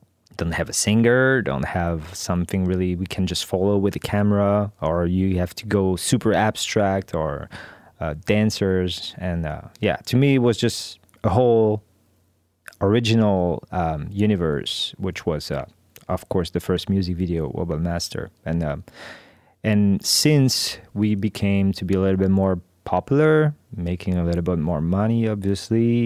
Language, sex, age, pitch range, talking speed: English, male, 20-39, 90-110 Hz, 160 wpm